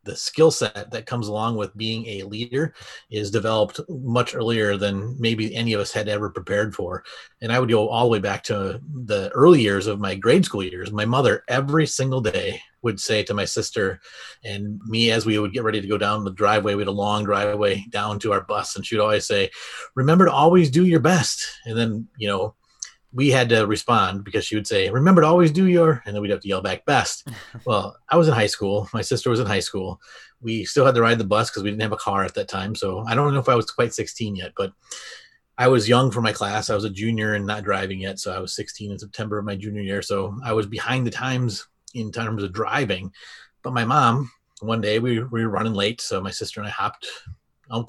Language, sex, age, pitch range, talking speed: English, male, 30-49, 105-125 Hz, 245 wpm